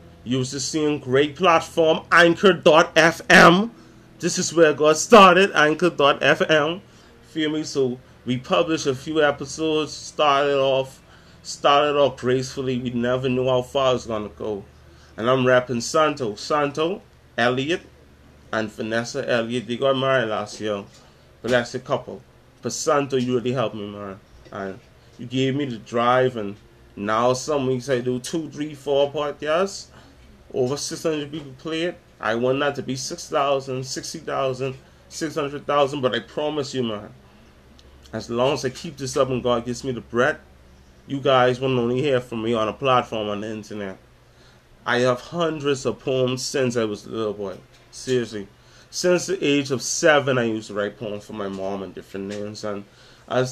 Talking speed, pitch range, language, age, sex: 165 wpm, 110-145 Hz, English, 20-39, male